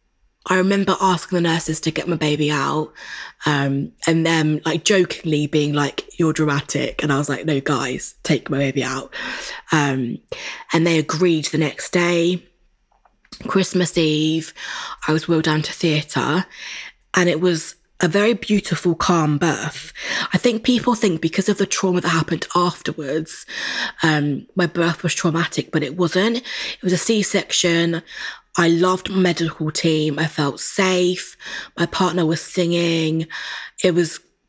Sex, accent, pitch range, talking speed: female, British, 155-180 Hz, 155 wpm